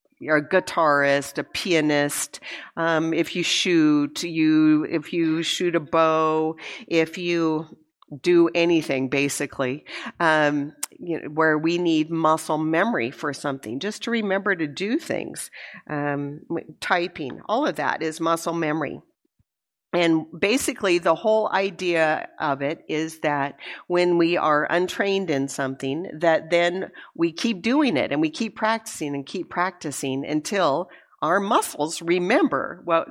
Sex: female